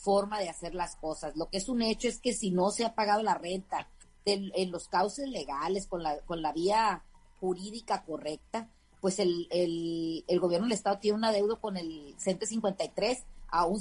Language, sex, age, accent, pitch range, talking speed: Spanish, female, 40-59, Mexican, 180-225 Hz, 195 wpm